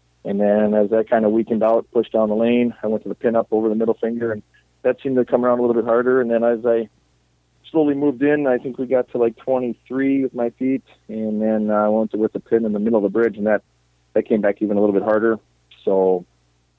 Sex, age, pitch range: male, 40-59, 100-120 Hz